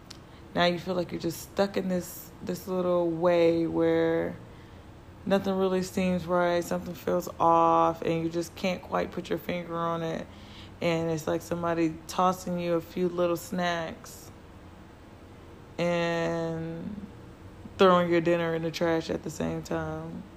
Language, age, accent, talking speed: English, 20-39, American, 150 wpm